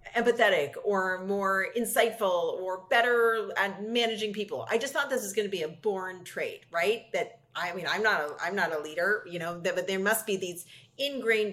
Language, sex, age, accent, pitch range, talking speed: English, female, 40-59, American, 170-215 Hz, 210 wpm